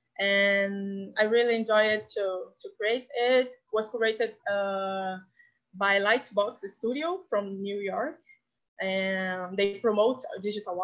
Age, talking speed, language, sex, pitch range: 20-39, 125 wpm, Portuguese, female, 195-230 Hz